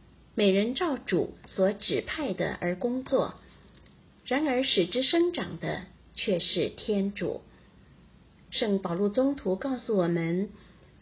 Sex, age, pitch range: female, 50-69, 185-250 Hz